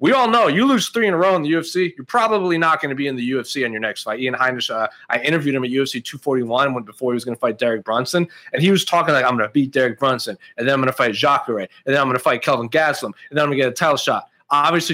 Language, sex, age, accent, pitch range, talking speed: English, male, 30-49, American, 130-170 Hz, 315 wpm